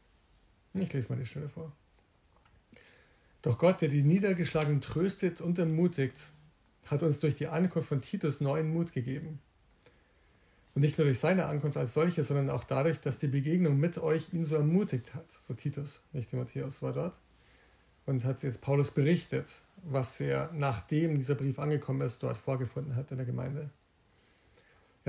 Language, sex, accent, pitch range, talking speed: German, male, German, 135-160 Hz, 165 wpm